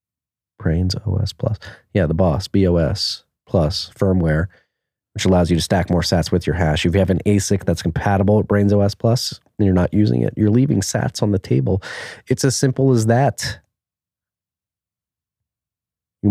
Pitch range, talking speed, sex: 90-110 Hz, 175 wpm, male